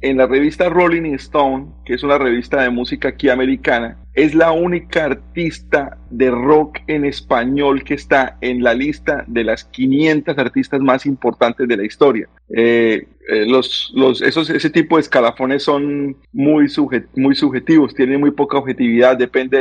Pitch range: 125-155 Hz